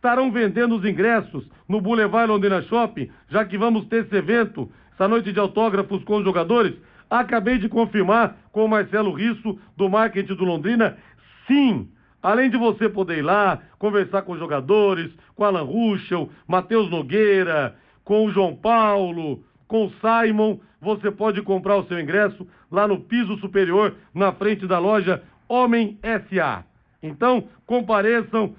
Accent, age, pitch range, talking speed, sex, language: Brazilian, 60-79, 185-230 Hz, 155 wpm, male, Portuguese